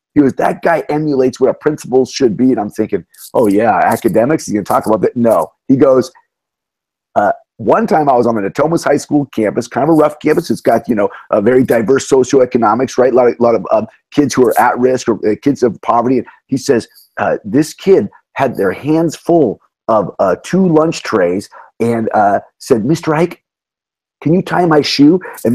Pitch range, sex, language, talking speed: 125-165 Hz, male, English, 215 wpm